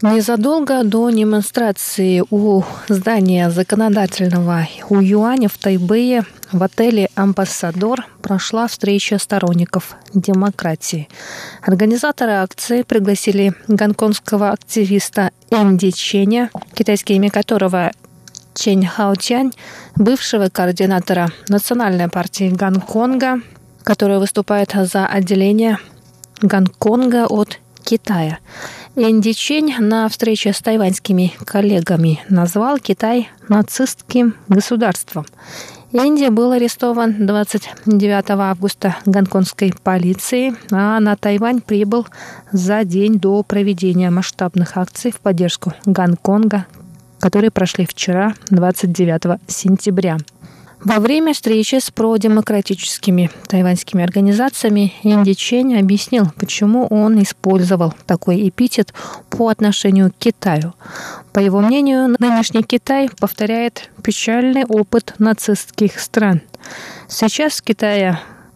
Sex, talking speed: female, 95 wpm